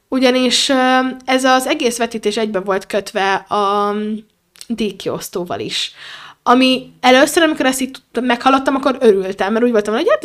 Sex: female